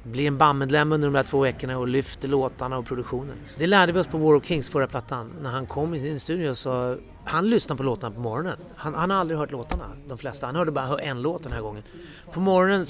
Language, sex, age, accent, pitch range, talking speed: Swedish, male, 30-49, native, 130-160 Hz, 255 wpm